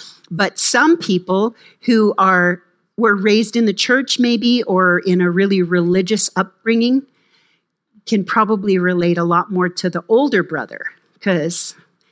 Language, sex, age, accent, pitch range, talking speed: English, female, 40-59, American, 180-225 Hz, 140 wpm